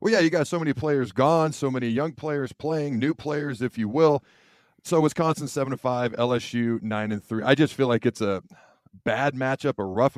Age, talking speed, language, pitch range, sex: 40-59, 205 wpm, English, 105-130 Hz, male